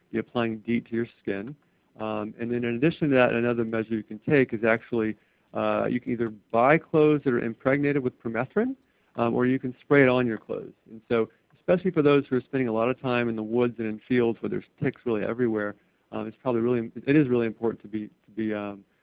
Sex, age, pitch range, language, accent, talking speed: male, 50-69, 110-135 Hz, English, American, 240 wpm